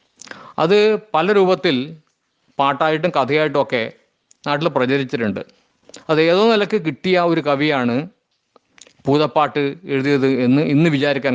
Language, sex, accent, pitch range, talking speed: Malayalam, male, native, 140-205 Hz, 90 wpm